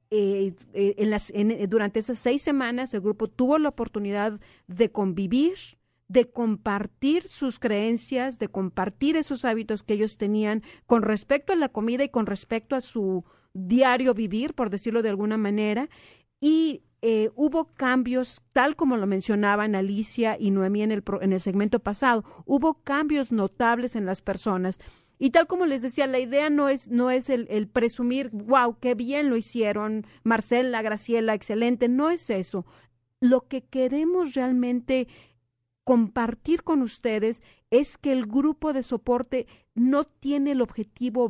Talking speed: 160 wpm